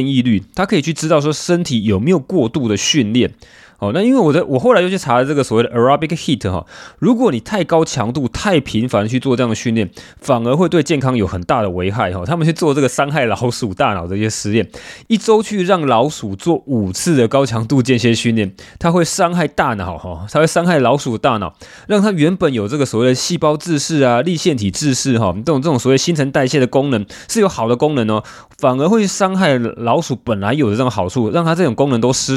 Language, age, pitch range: Chinese, 20-39, 115-165 Hz